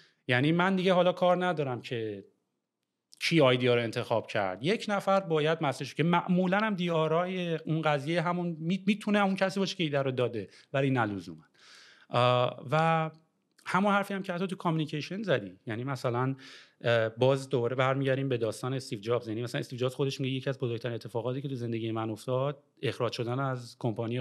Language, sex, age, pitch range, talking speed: English, male, 30-49, 115-160 Hz, 180 wpm